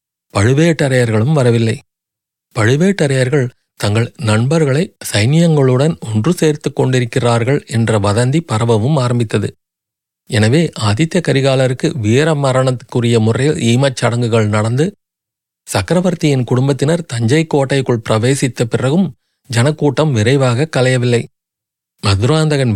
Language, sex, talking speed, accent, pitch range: Tamil, male, 80 wpm, native, 115-145 Hz